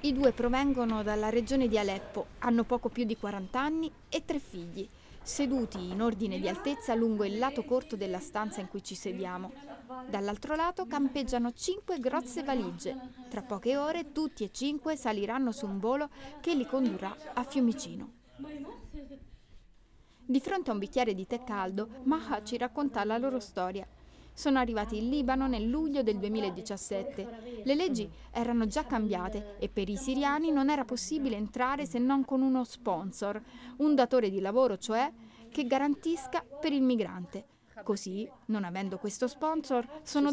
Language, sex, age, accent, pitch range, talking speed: Italian, female, 30-49, native, 215-275 Hz, 160 wpm